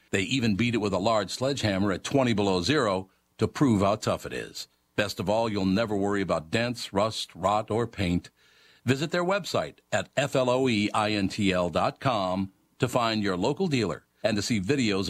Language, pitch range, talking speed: English, 90-125 Hz, 175 wpm